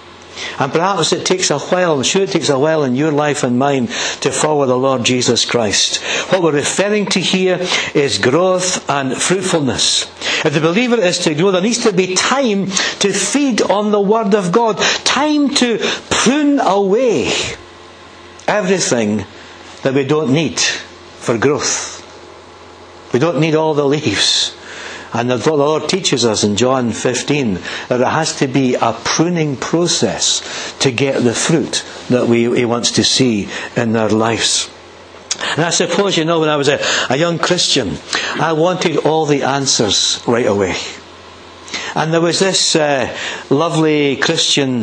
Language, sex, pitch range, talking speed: English, male, 135-185 Hz, 165 wpm